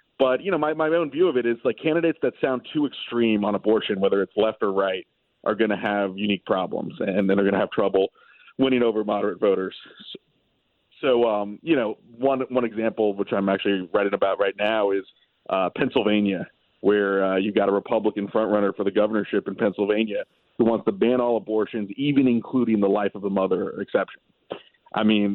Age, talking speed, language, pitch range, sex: 40-59, 200 wpm, English, 100-120 Hz, male